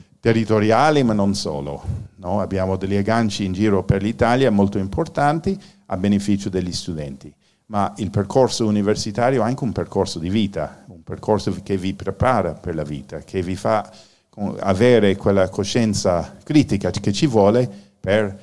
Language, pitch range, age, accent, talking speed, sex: Italian, 85-110 Hz, 50-69, native, 155 wpm, male